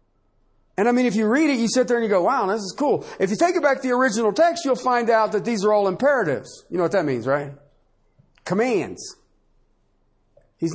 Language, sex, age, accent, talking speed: English, male, 40-59, American, 235 wpm